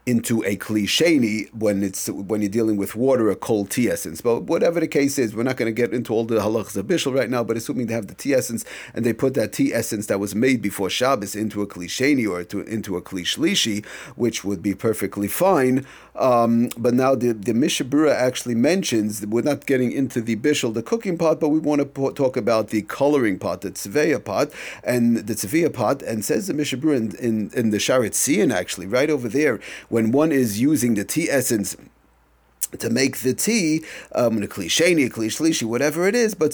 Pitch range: 105-145 Hz